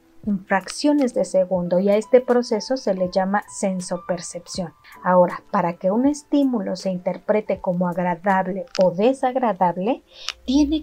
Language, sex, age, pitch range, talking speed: Spanish, female, 30-49, 185-235 Hz, 140 wpm